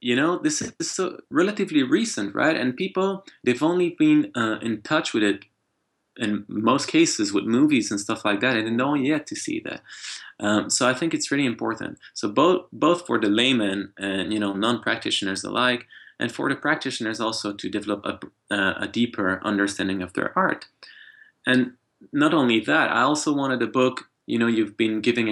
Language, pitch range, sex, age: English, 105-165 Hz, male, 20-39